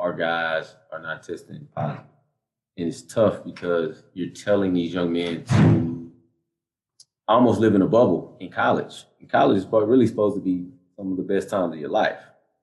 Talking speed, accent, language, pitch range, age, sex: 175 wpm, American, English, 85-105 Hz, 20-39, male